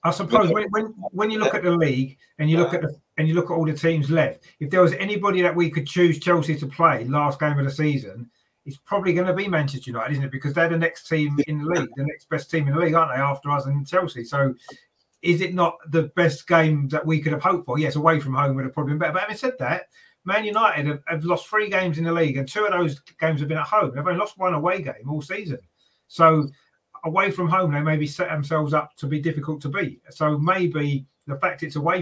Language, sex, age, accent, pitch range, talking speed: English, male, 30-49, British, 140-170 Hz, 265 wpm